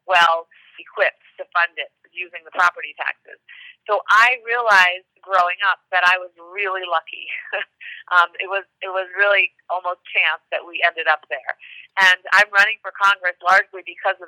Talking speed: 165 wpm